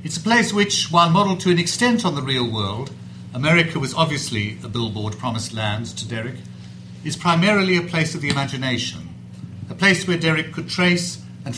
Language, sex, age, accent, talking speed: English, male, 50-69, British, 185 wpm